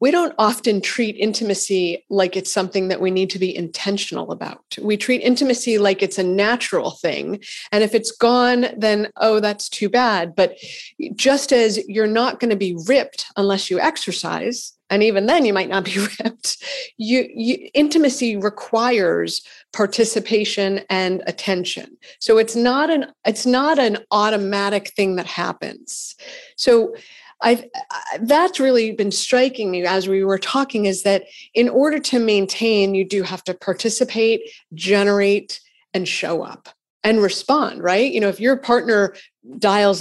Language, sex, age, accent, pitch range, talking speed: English, female, 40-59, American, 190-240 Hz, 155 wpm